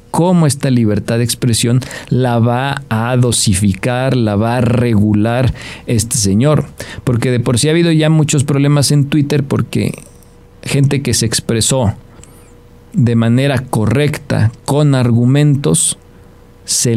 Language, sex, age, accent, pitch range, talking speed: Spanish, male, 40-59, Mexican, 115-145 Hz, 130 wpm